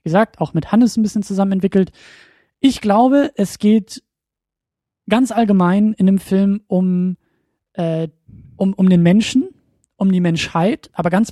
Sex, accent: male, German